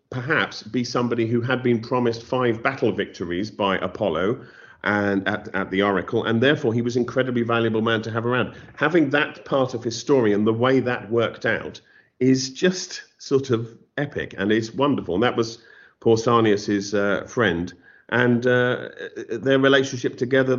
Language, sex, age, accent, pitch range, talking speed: English, male, 50-69, British, 115-135 Hz, 170 wpm